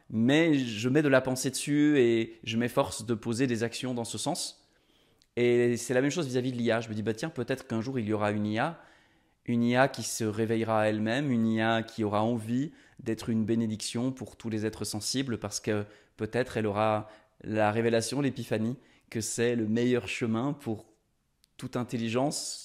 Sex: male